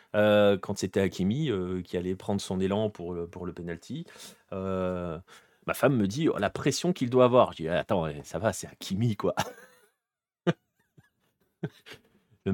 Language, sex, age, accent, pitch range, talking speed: French, male, 30-49, French, 100-125 Hz, 165 wpm